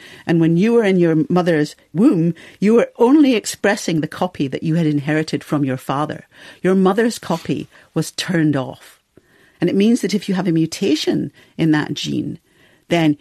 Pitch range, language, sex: 150-190 Hz, English, female